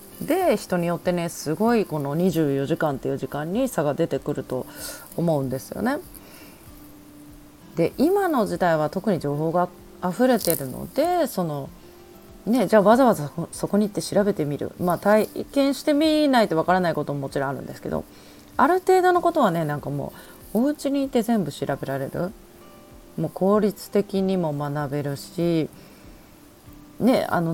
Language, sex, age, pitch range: Japanese, female, 30-49, 145-205 Hz